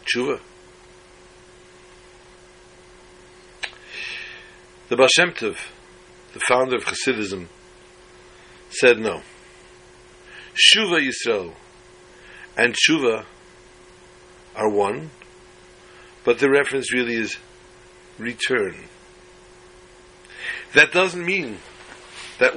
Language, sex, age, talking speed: English, male, 60-79, 65 wpm